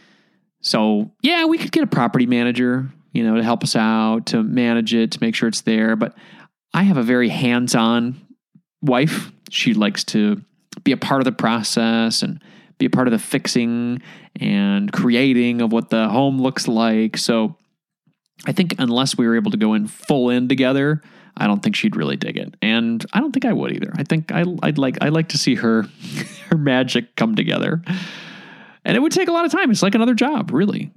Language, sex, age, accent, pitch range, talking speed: English, male, 20-39, American, 130-220 Hz, 205 wpm